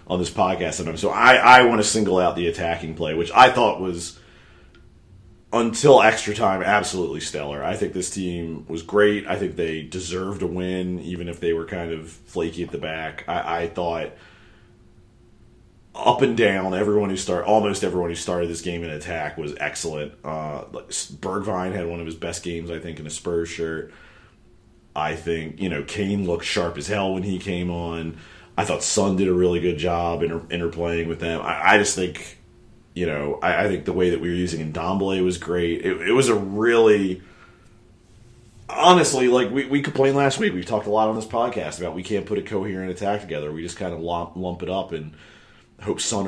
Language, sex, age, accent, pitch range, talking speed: English, male, 40-59, American, 85-105 Hz, 205 wpm